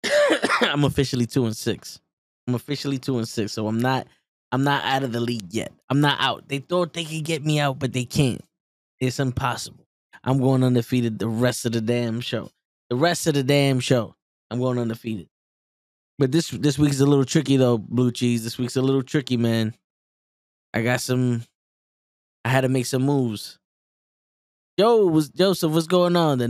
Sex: male